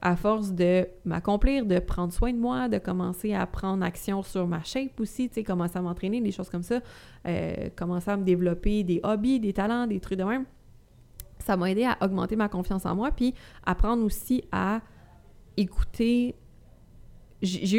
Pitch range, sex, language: 180-225 Hz, female, French